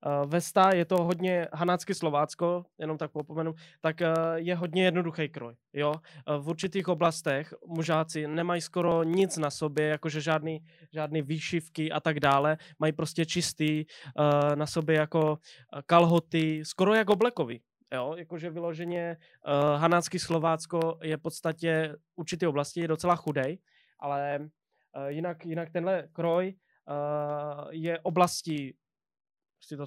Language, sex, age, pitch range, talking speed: Czech, male, 20-39, 150-175 Hz, 120 wpm